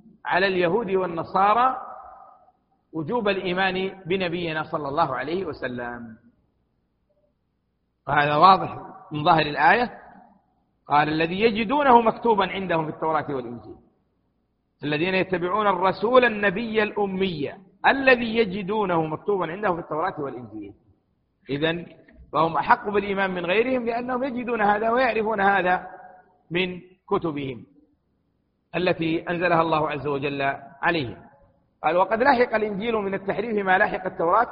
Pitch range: 150-195 Hz